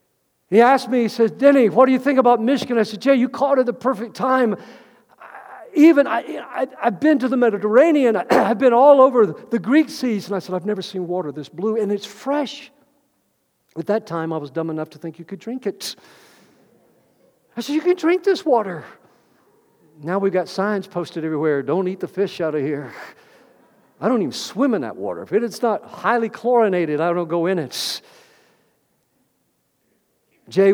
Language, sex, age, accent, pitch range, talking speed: English, male, 50-69, American, 140-235 Hz, 190 wpm